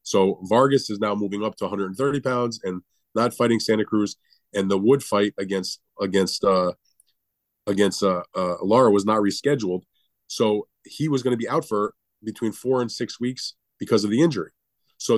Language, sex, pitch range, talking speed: English, male, 100-115 Hz, 180 wpm